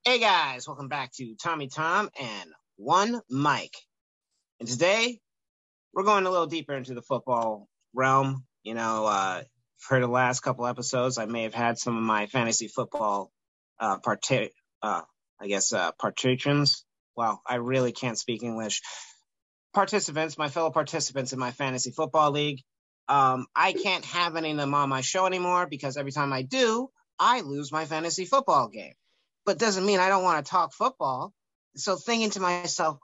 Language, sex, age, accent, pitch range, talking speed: English, male, 30-49, American, 130-185 Hz, 170 wpm